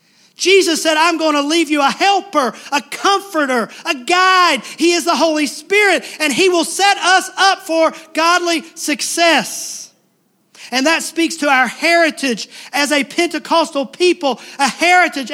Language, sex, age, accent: English, male, 40-59, American